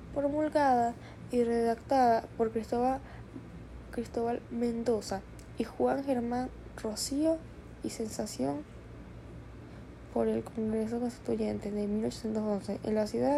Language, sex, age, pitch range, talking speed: Spanish, female, 10-29, 205-250 Hz, 95 wpm